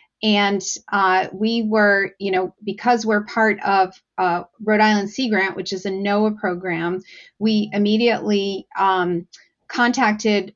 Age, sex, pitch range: 40-59, female, 190-220 Hz